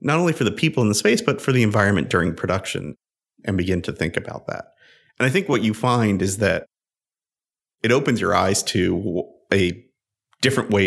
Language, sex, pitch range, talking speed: English, male, 90-105 Hz, 200 wpm